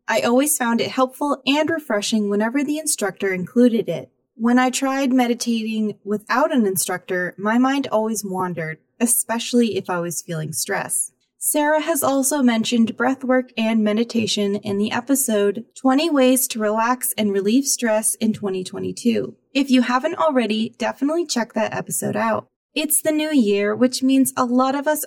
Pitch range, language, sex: 205-260 Hz, English, female